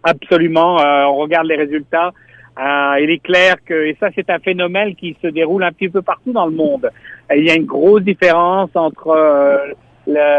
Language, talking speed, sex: French, 210 wpm, male